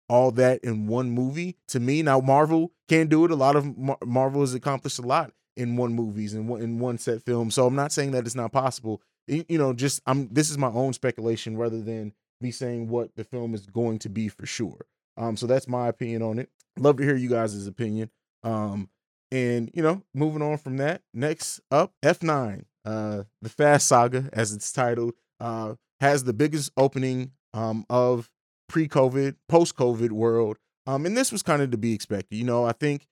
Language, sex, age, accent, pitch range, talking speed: English, male, 20-39, American, 115-135 Hz, 205 wpm